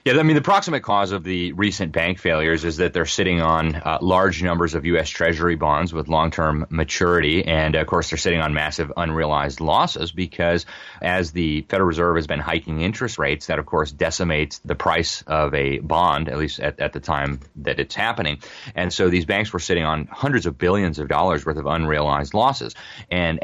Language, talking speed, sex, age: English, 205 wpm, male, 30-49